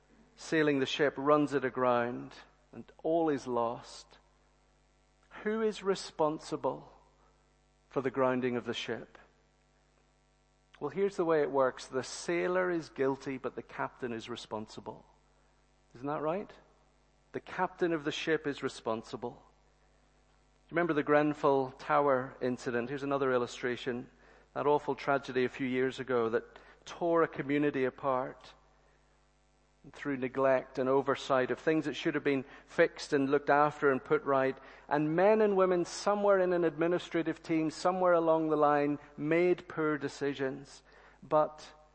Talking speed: 140 wpm